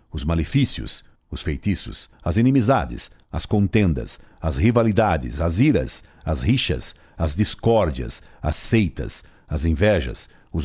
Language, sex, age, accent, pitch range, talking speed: Portuguese, male, 60-79, Brazilian, 90-125 Hz, 120 wpm